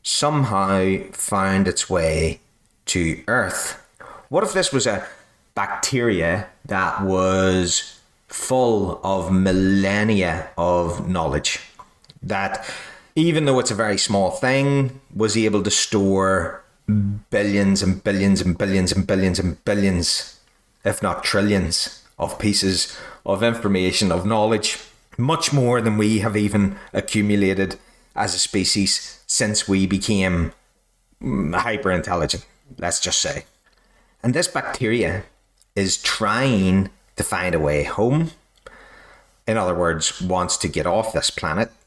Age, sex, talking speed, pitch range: 30-49, male, 125 wpm, 95-110 Hz